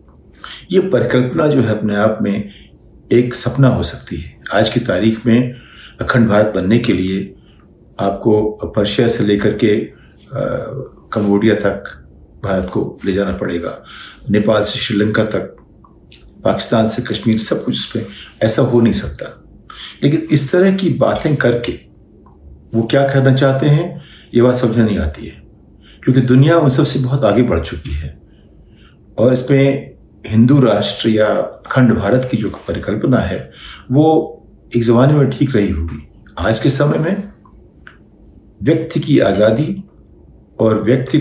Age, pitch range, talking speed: 50-69, 105-130 Hz, 145 wpm